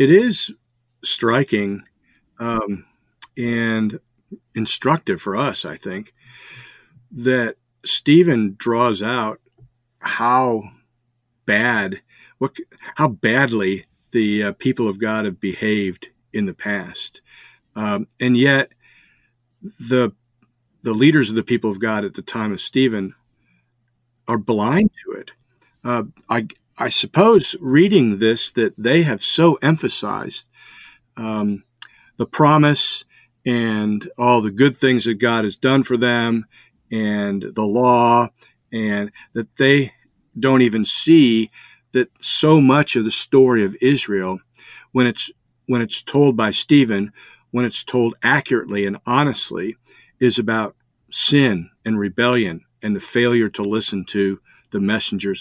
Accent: American